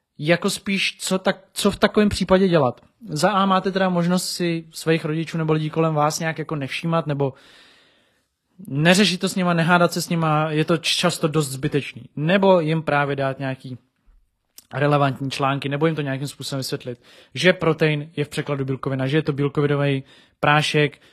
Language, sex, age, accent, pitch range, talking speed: Czech, male, 20-39, native, 145-170 Hz, 175 wpm